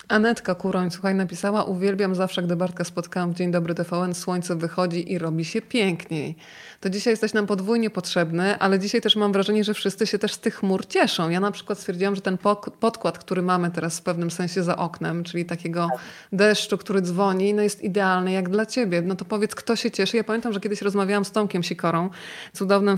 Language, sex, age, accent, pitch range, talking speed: Polish, female, 20-39, native, 180-215 Hz, 205 wpm